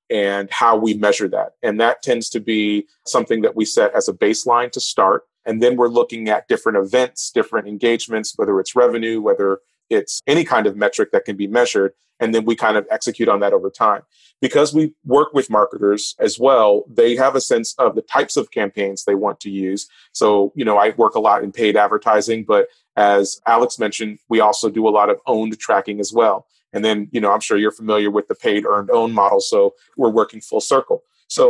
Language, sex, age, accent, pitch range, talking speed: English, male, 30-49, American, 105-135 Hz, 220 wpm